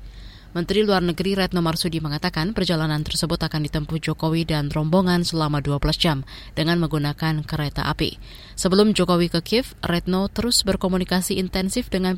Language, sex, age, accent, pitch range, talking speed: Indonesian, female, 20-39, native, 160-185 Hz, 145 wpm